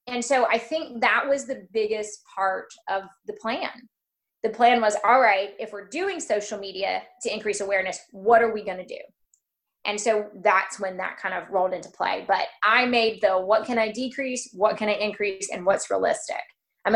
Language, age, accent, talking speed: English, 20-39, American, 200 wpm